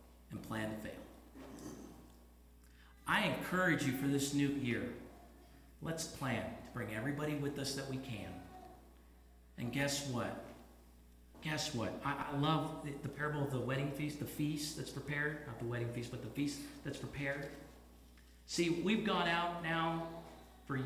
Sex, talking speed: male, 160 wpm